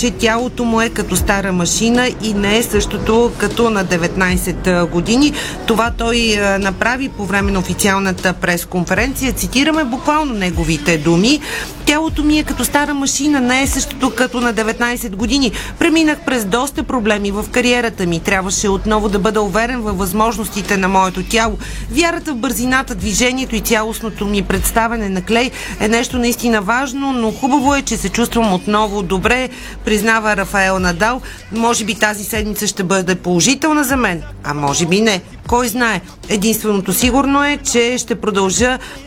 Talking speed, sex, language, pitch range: 160 wpm, female, Bulgarian, 195-245 Hz